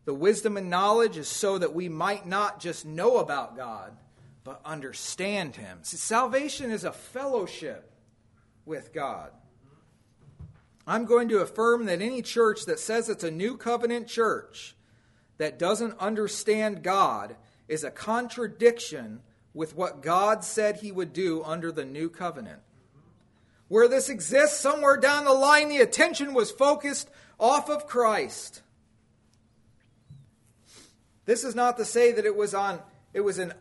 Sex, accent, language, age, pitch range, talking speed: male, American, English, 40-59, 135-220 Hz, 145 wpm